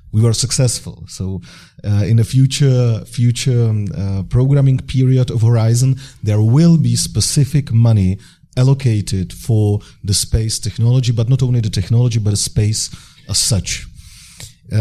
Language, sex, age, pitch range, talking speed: German, male, 40-59, 105-125 Hz, 140 wpm